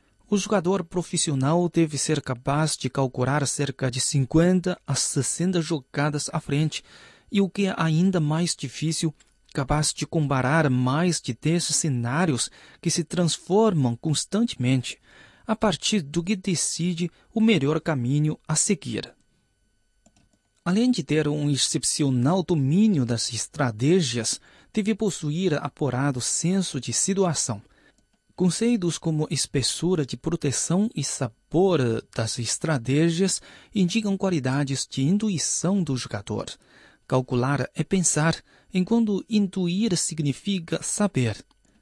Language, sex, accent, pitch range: Chinese, male, Brazilian, 130-180 Hz